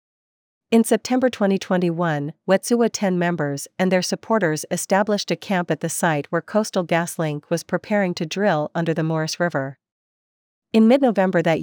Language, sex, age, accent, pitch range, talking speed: English, female, 40-59, American, 165-200 Hz, 150 wpm